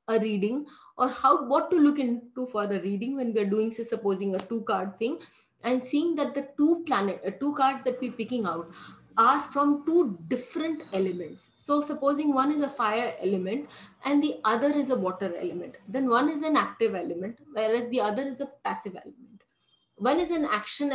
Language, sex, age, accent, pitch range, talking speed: English, female, 20-39, Indian, 230-290 Hz, 200 wpm